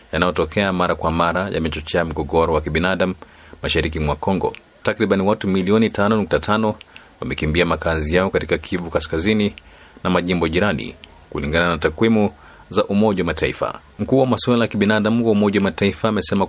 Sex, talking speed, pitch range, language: male, 155 wpm, 80-95 Hz, Swahili